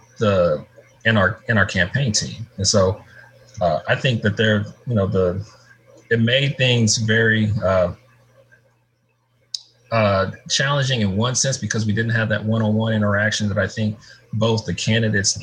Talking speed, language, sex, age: 155 wpm, English, male, 30-49